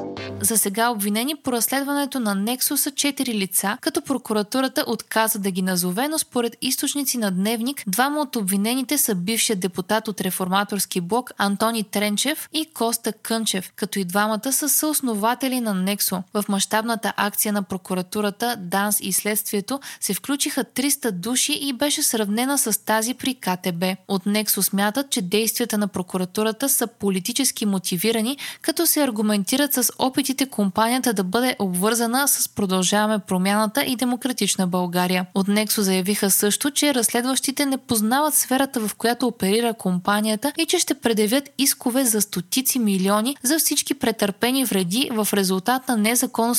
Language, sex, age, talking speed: Bulgarian, female, 20-39, 150 wpm